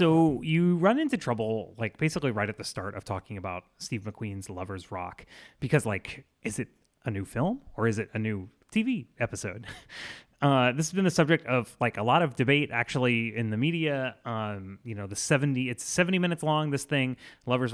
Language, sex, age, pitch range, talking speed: English, male, 30-49, 105-140 Hz, 205 wpm